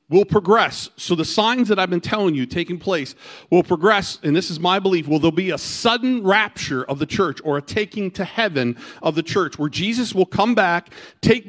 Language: English